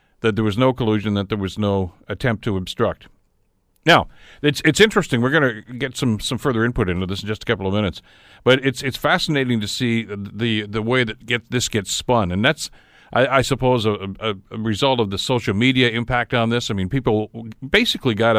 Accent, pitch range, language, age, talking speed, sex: American, 105-130 Hz, English, 50-69, 220 wpm, male